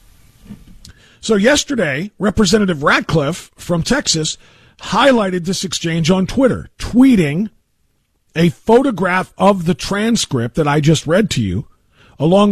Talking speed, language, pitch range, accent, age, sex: 115 wpm, English, 145-205 Hz, American, 50-69, male